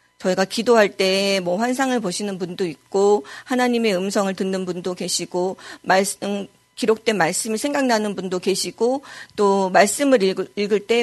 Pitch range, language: 200-260 Hz, Korean